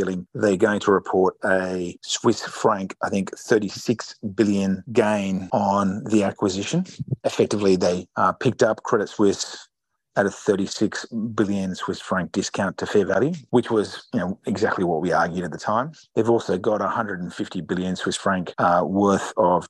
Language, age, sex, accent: English, 30-49, male, Australian